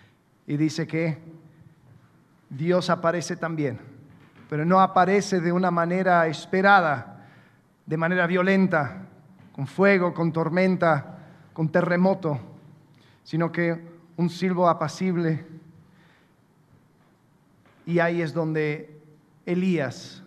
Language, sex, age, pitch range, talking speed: Spanish, male, 40-59, 155-205 Hz, 95 wpm